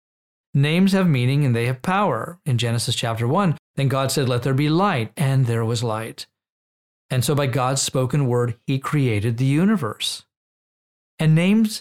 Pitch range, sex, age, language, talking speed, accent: 120-150 Hz, male, 40-59, English, 175 wpm, American